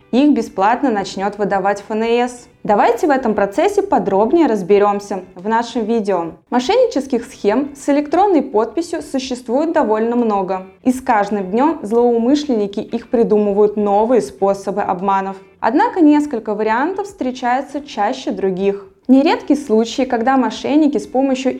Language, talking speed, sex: Russian, 120 wpm, female